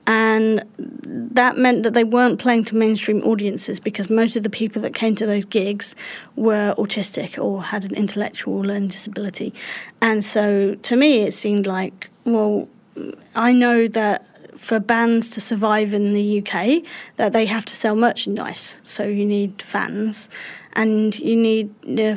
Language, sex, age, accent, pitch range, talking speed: English, female, 30-49, British, 210-235 Hz, 160 wpm